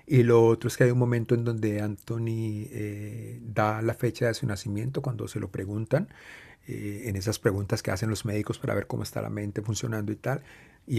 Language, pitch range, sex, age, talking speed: Spanish, 105-120 Hz, male, 40-59, 220 wpm